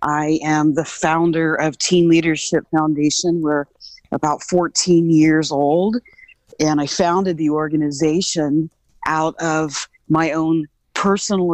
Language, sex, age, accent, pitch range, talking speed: English, female, 40-59, American, 150-170 Hz, 120 wpm